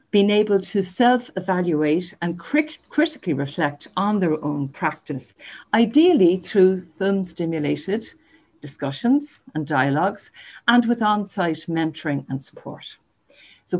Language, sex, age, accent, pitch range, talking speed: English, female, 50-69, Irish, 165-230 Hz, 110 wpm